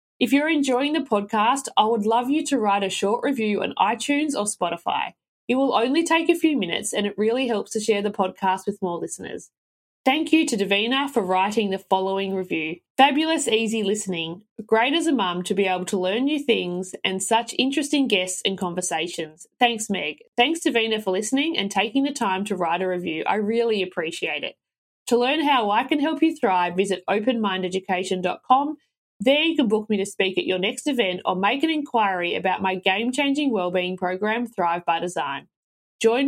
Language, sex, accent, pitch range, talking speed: English, female, Australian, 190-255 Hz, 195 wpm